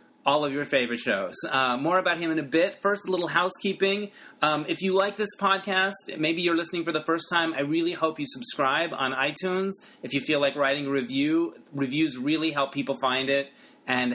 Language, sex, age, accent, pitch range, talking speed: English, male, 30-49, American, 135-175 Hz, 210 wpm